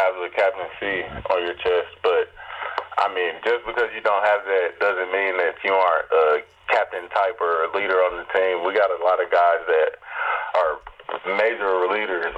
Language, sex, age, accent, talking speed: English, male, 20-39, American, 195 wpm